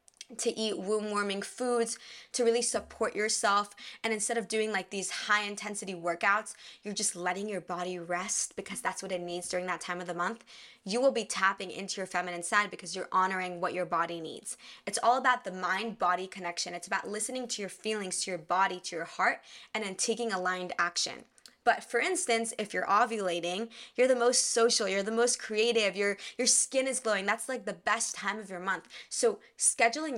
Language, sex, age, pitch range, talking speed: English, female, 20-39, 185-235 Hz, 200 wpm